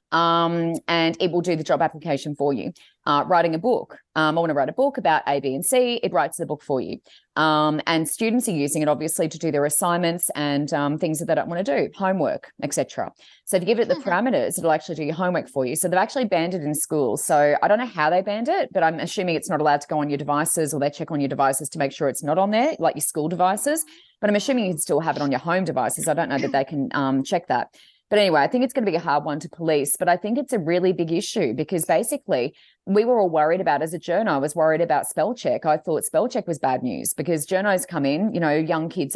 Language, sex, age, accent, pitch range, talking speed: English, female, 30-49, Australian, 150-190 Hz, 280 wpm